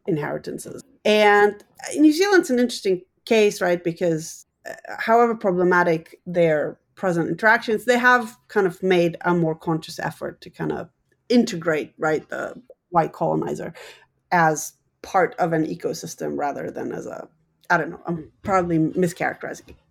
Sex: female